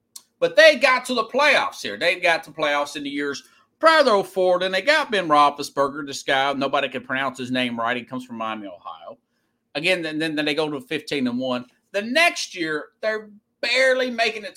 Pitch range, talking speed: 145-205 Hz, 210 wpm